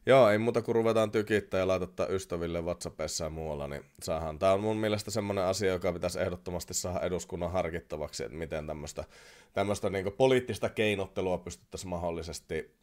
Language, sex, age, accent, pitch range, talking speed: Finnish, male, 30-49, native, 85-110 Hz, 165 wpm